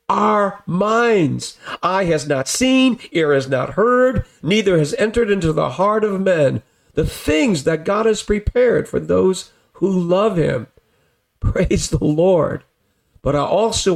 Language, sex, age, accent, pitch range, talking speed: English, male, 50-69, American, 155-220 Hz, 150 wpm